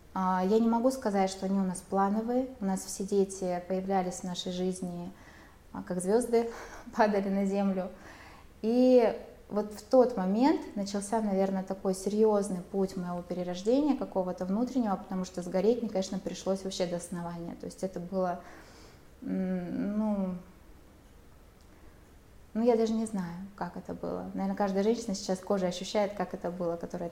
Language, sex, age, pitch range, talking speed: Russian, female, 20-39, 180-215 Hz, 150 wpm